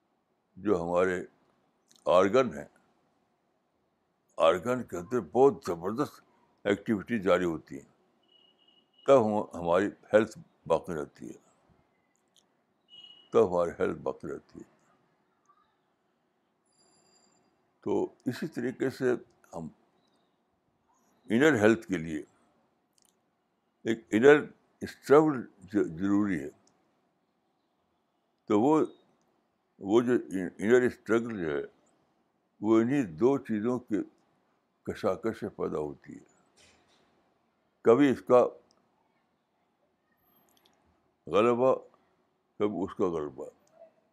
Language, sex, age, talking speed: Urdu, male, 60-79, 90 wpm